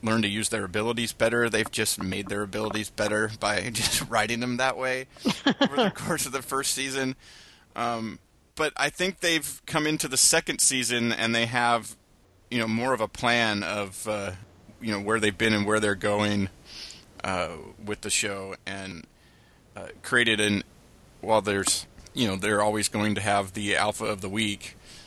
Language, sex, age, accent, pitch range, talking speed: English, male, 30-49, American, 100-115 Hz, 185 wpm